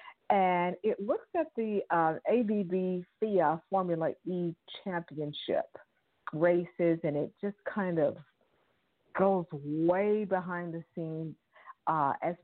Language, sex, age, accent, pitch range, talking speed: English, female, 50-69, American, 150-190 Hz, 115 wpm